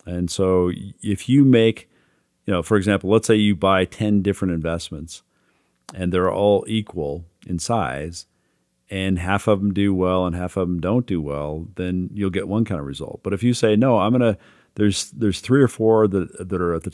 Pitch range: 90-110 Hz